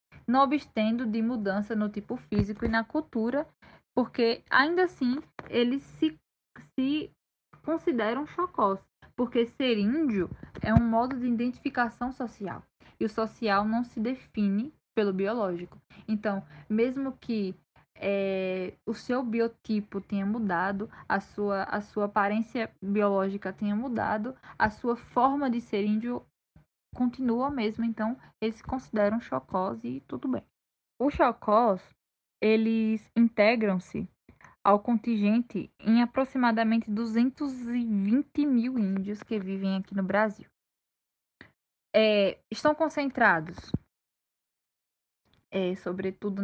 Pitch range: 200-245 Hz